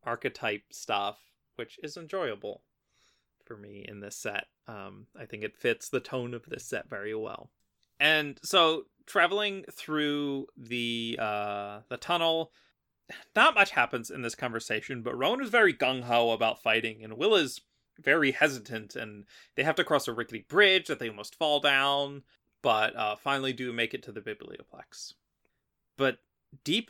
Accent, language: American, English